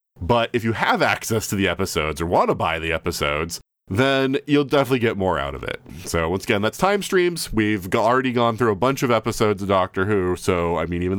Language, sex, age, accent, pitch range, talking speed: English, male, 30-49, American, 85-115 Hz, 235 wpm